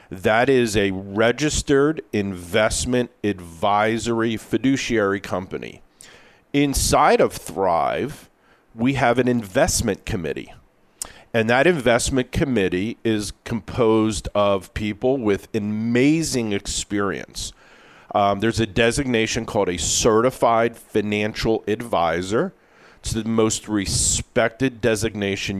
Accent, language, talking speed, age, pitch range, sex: American, English, 95 wpm, 40-59, 100-120 Hz, male